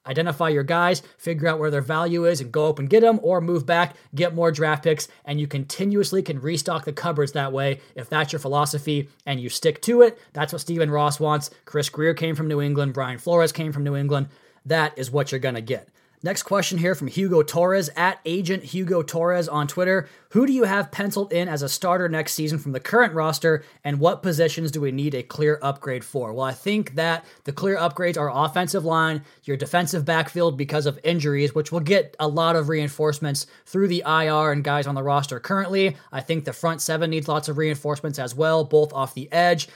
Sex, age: male, 20-39